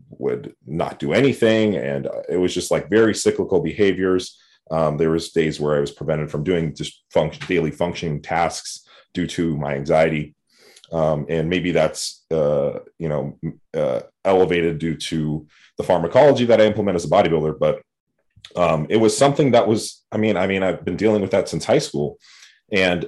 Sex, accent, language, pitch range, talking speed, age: male, American, English, 80-95 Hz, 180 wpm, 30-49